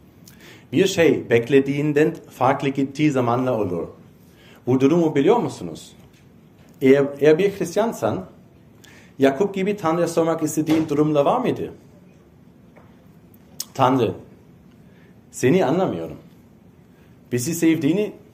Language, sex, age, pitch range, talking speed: Turkish, male, 40-59, 120-160 Hz, 90 wpm